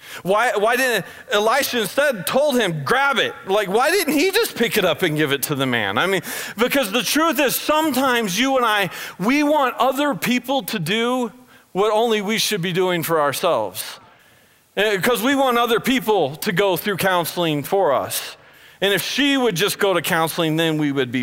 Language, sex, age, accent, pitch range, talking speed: English, male, 40-59, American, 165-235 Hz, 200 wpm